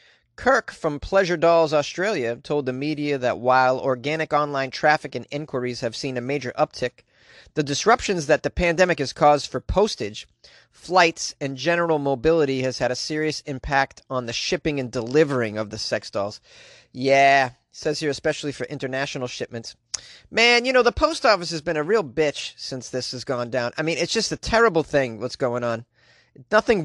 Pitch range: 130-175 Hz